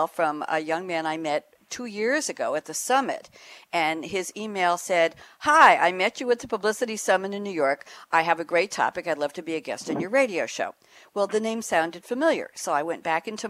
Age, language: 60-79, English